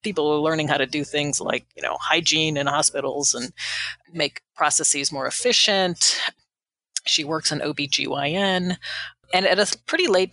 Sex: female